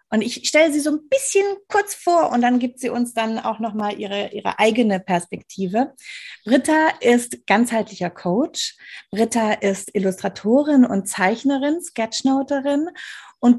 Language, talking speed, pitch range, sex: German, 135 wpm, 220-290 Hz, female